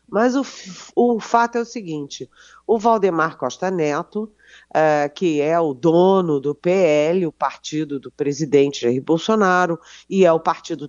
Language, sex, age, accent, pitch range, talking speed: Portuguese, female, 40-59, Brazilian, 155-205 Hz, 155 wpm